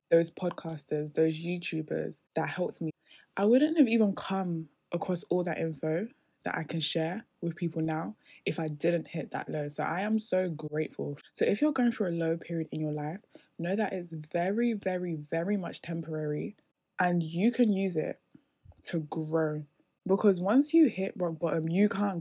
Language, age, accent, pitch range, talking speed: English, 10-29, British, 165-205 Hz, 185 wpm